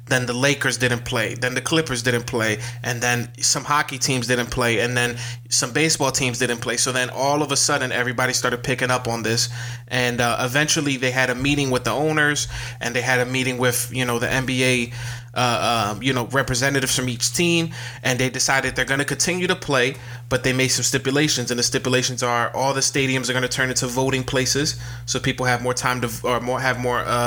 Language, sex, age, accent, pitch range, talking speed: English, male, 20-39, American, 120-135 Hz, 225 wpm